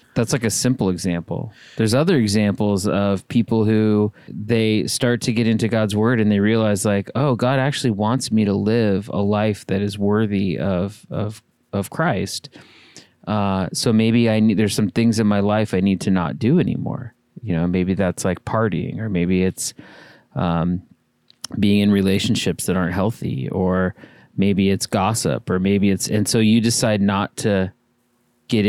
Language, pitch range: English, 100-115 Hz